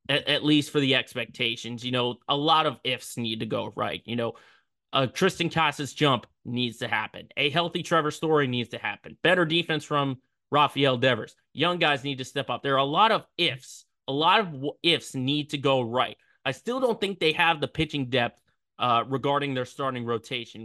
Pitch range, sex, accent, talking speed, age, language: 125-155 Hz, male, American, 205 wpm, 20-39, English